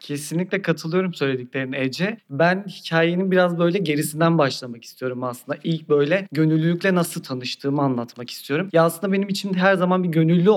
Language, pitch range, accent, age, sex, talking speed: Turkish, 155-195 Hz, native, 40-59, male, 155 wpm